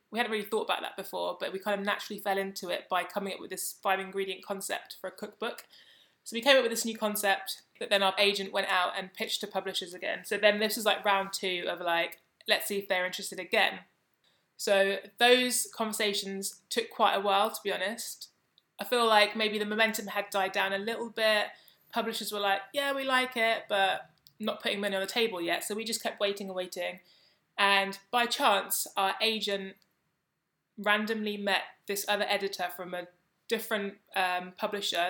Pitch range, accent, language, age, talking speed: 195-220 Hz, British, English, 20-39, 205 wpm